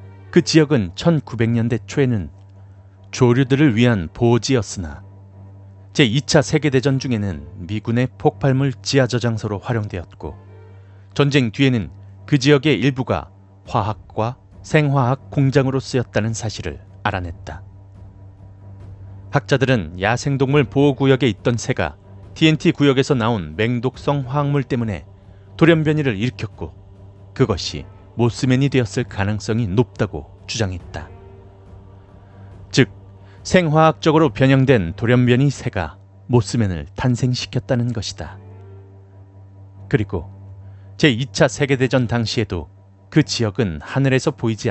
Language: Korean